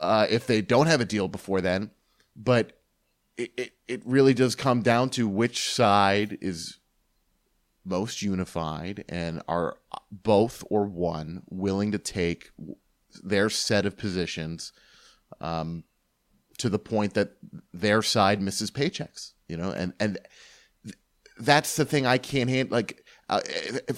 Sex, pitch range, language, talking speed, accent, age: male, 95-120 Hz, English, 140 wpm, American, 30-49